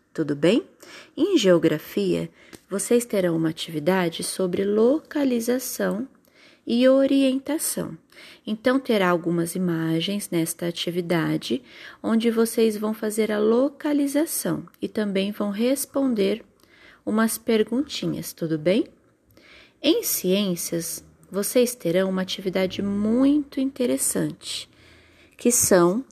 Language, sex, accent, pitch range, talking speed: Portuguese, female, Brazilian, 180-260 Hz, 95 wpm